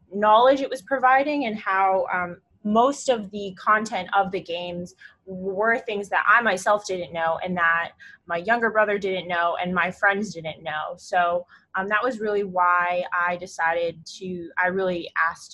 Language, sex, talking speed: English, female, 175 wpm